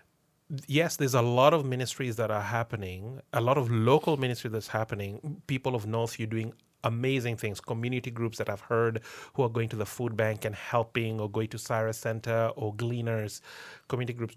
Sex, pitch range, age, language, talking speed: male, 115-135 Hz, 30-49, English, 190 wpm